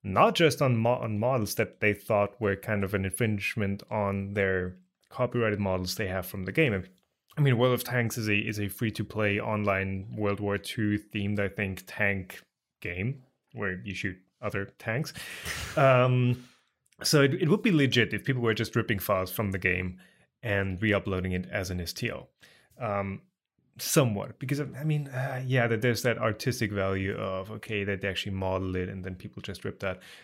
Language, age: English, 20-39